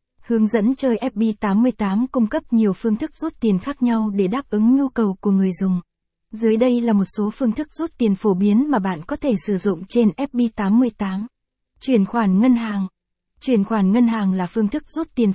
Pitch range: 200-240 Hz